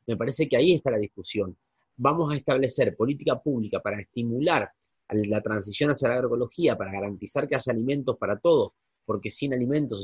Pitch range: 115-155 Hz